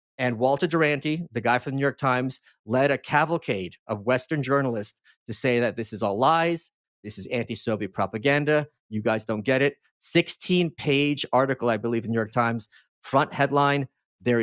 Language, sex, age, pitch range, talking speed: English, male, 40-59, 120-140 Hz, 180 wpm